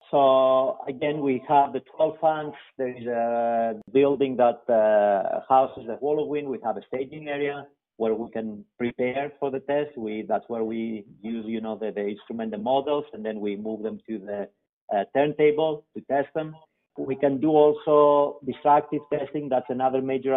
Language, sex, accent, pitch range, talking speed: English, male, Spanish, 120-140 Hz, 180 wpm